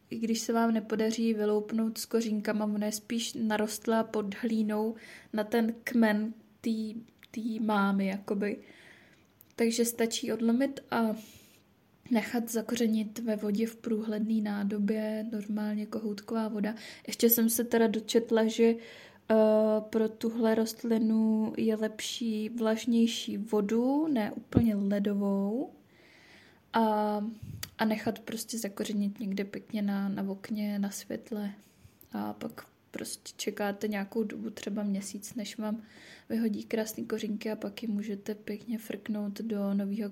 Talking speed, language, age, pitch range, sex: 125 wpm, Czech, 10-29, 210-230 Hz, female